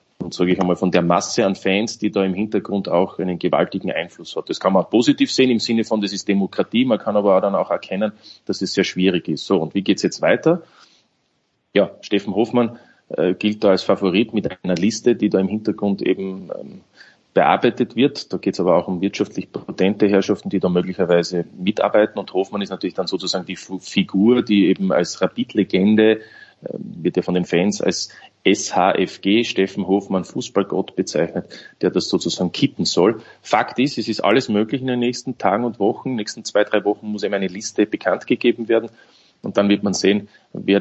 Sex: male